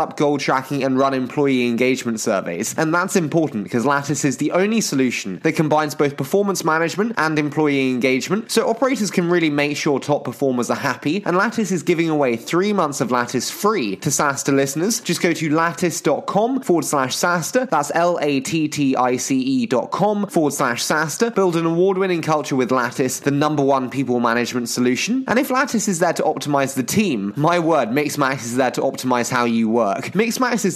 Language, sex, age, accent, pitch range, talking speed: English, male, 20-39, British, 130-185 Hz, 185 wpm